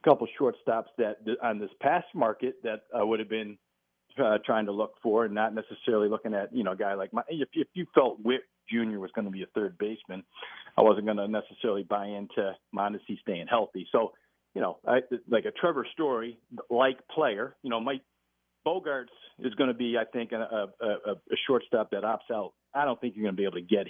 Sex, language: male, English